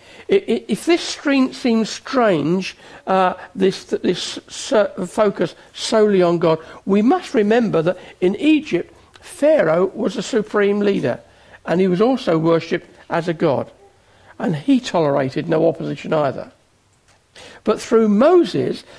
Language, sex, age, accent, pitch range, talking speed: English, male, 60-79, British, 170-240 Hz, 125 wpm